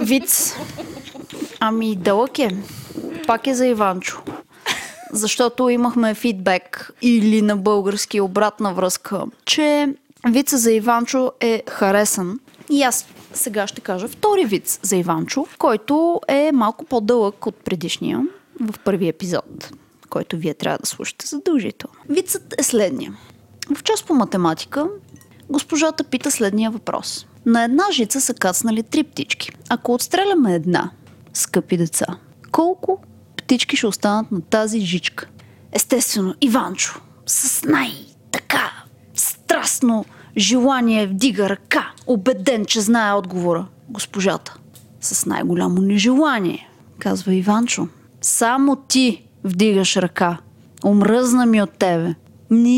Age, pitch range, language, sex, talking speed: 20-39, 195-270 Hz, Bulgarian, female, 115 wpm